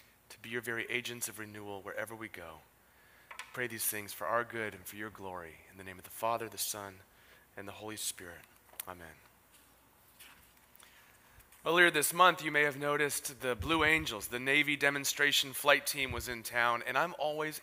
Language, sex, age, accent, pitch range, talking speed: English, male, 30-49, American, 115-155 Hz, 185 wpm